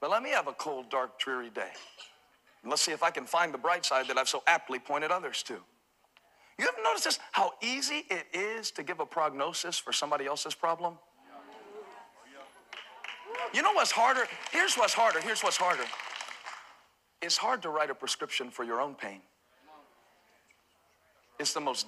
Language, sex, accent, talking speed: English, male, American, 180 wpm